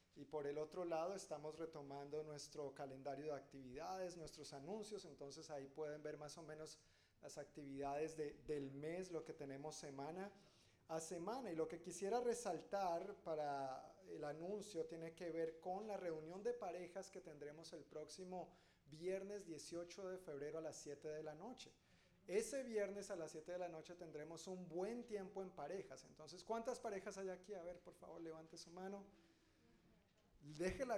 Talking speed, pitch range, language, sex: 170 wpm, 145-185 Hz, Spanish, male